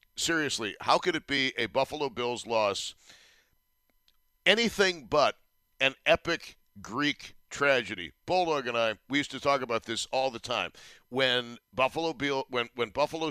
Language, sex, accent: English, male, American